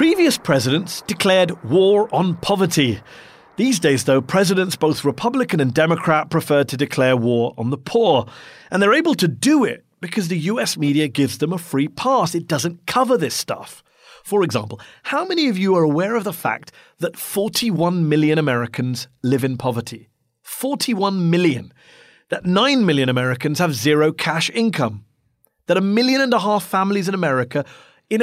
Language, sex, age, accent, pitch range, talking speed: English, male, 40-59, British, 145-210 Hz, 170 wpm